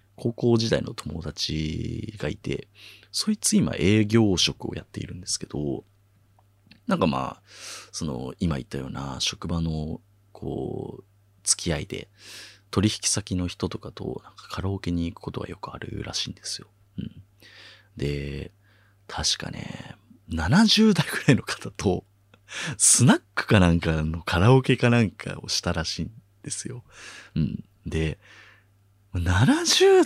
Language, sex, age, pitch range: Japanese, male, 30-49, 90-110 Hz